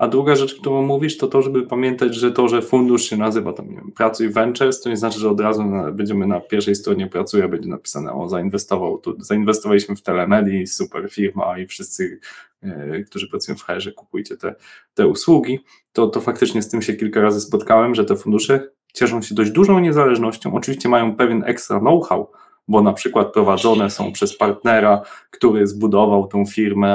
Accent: native